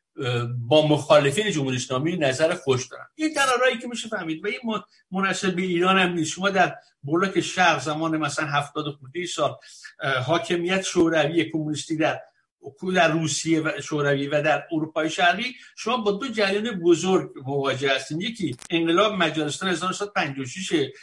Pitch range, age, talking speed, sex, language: 155-205 Hz, 60-79, 140 wpm, male, Persian